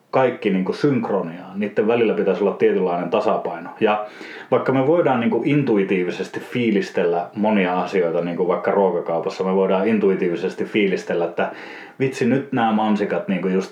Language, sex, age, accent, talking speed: Finnish, male, 30-49, native, 140 wpm